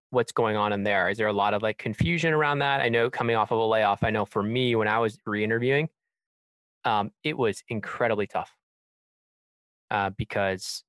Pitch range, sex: 105-125 Hz, male